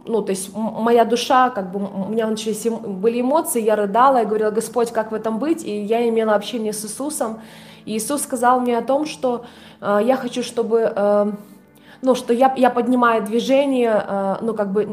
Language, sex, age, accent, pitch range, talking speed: Russian, female, 20-39, native, 215-245 Hz, 195 wpm